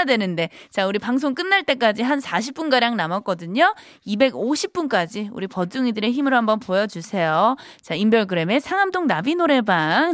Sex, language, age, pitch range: female, Korean, 20-39, 220-330 Hz